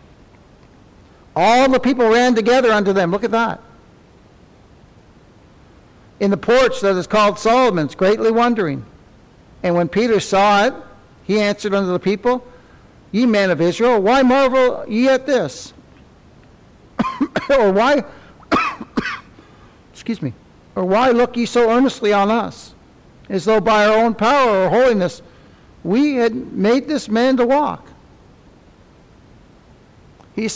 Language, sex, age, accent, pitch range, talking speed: English, male, 60-79, American, 205-255 Hz, 130 wpm